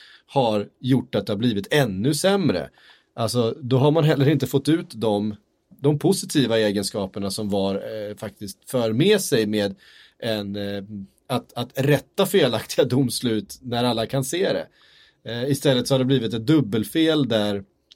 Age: 30-49